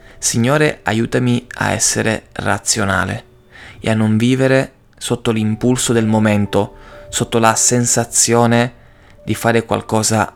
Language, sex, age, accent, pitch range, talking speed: Italian, male, 20-39, native, 105-120 Hz, 110 wpm